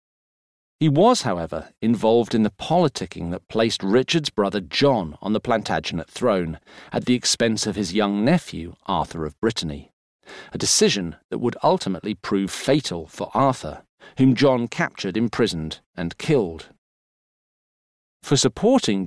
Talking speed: 135 wpm